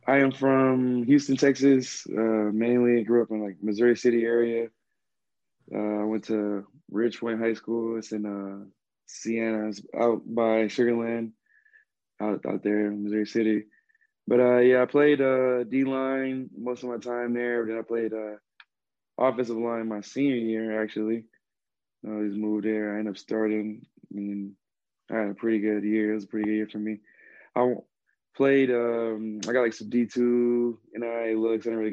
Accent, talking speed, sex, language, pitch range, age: American, 180 wpm, male, English, 105-120 Hz, 20-39